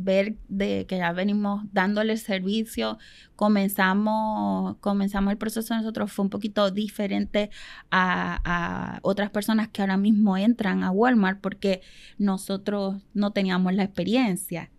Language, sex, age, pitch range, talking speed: Spanish, female, 20-39, 195-230 Hz, 135 wpm